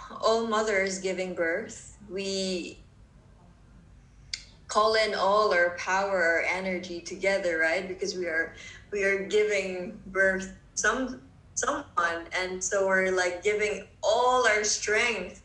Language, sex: English, female